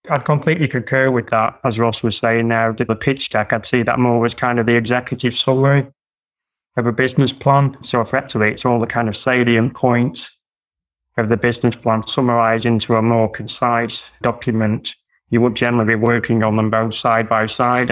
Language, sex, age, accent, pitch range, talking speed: English, male, 20-39, British, 115-125 Hz, 190 wpm